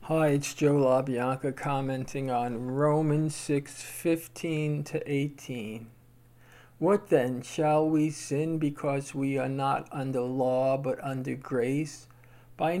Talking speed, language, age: 120 wpm, English, 50-69